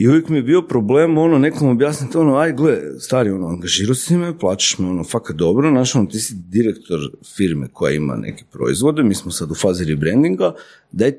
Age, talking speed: 40-59, 205 wpm